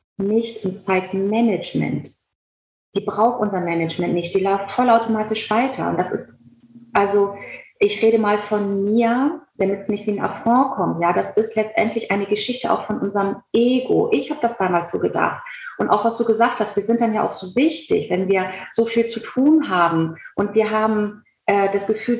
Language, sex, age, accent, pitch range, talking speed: German, female, 30-49, German, 195-235 Hz, 190 wpm